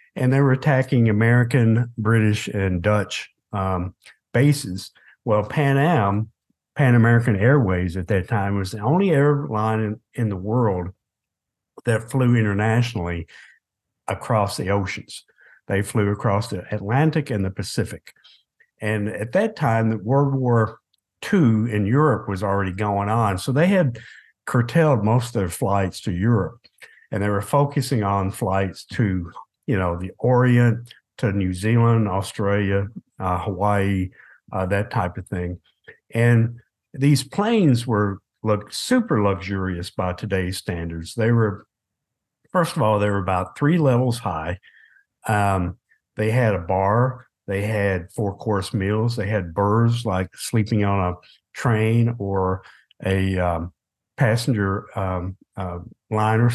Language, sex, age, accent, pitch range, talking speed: English, male, 60-79, American, 95-120 Hz, 140 wpm